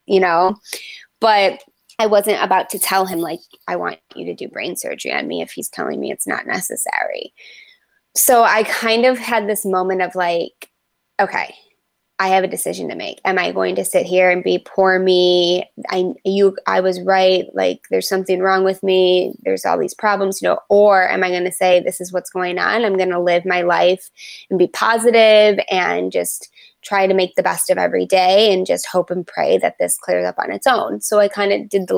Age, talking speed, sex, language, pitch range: 20-39, 220 wpm, female, English, 180-205 Hz